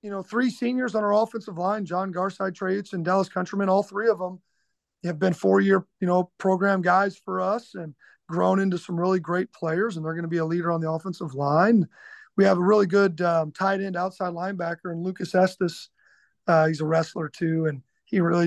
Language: English